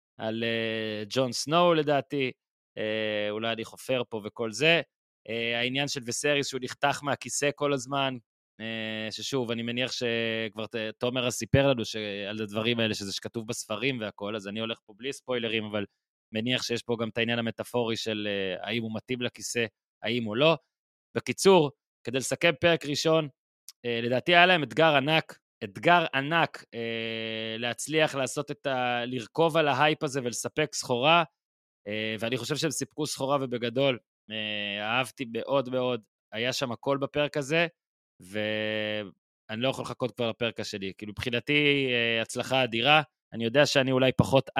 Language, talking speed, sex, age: Hebrew, 150 wpm, male, 20-39